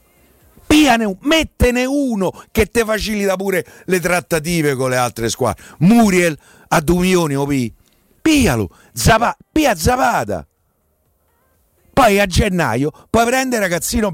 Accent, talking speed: native, 120 wpm